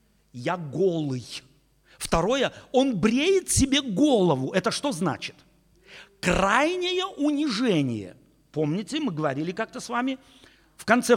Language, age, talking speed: Russian, 50-69, 110 wpm